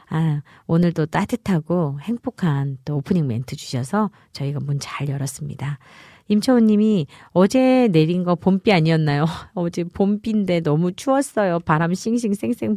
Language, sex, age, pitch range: Korean, female, 40-59, 145-205 Hz